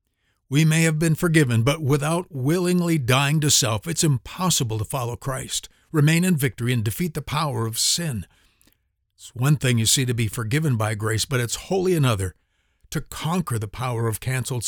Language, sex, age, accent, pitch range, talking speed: English, male, 60-79, American, 110-145 Hz, 185 wpm